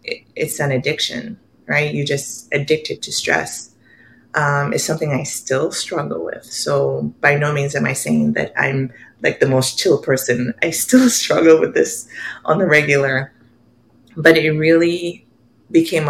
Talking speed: 155 wpm